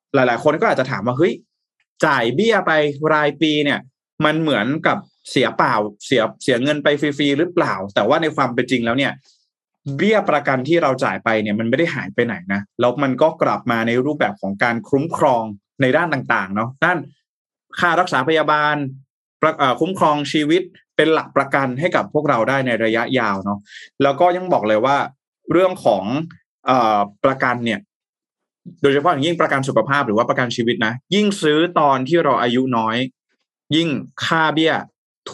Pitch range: 125-155 Hz